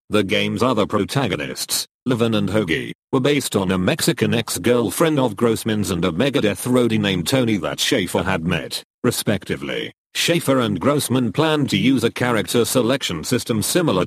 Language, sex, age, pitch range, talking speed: English, male, 40-59, 105-135 Hz, 160 wpm